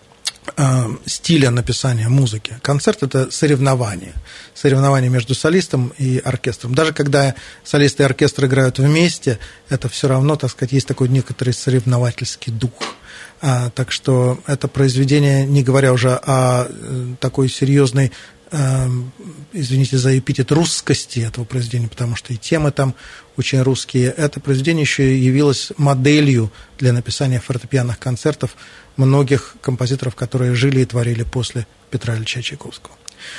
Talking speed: 125 wpm